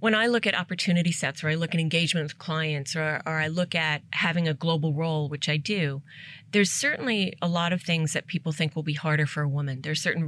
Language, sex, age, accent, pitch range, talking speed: English, female, 30-49, American, 150-180 Hz, 250 wpm